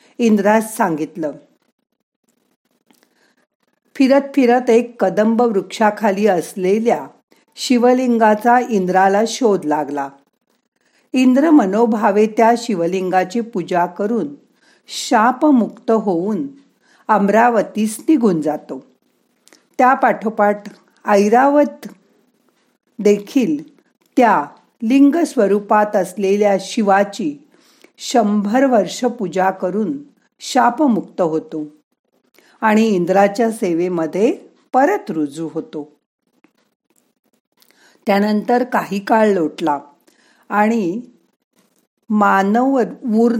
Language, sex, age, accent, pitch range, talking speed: Marathi, female, 50-69, native, 195-250 Hz, 60 wpm